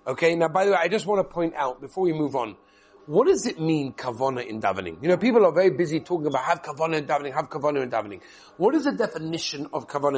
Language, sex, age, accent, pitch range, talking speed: English, male, 40-59, British, 155-195 Hz, 260 wpm